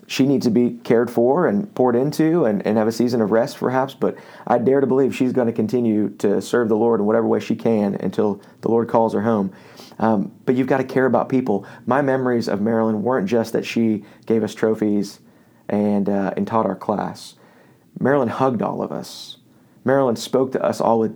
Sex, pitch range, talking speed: male, 115-130 Hz, 220 wpm